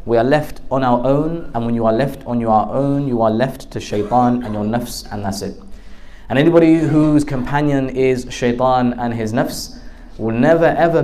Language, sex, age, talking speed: English, male, 20-39, 200 wpm